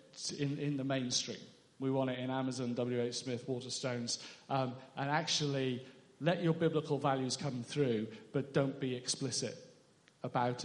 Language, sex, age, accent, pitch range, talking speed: English, male, 40-59, British, 125-150 Hz, 145 wpm